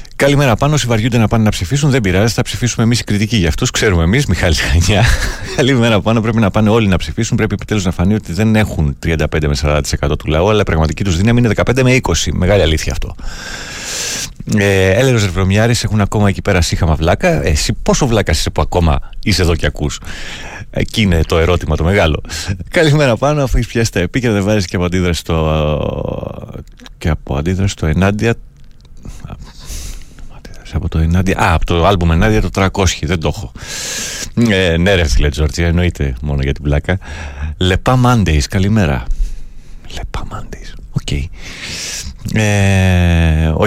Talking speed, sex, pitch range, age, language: 150 wpm, male, 80-110 Hz, 30-49, Greek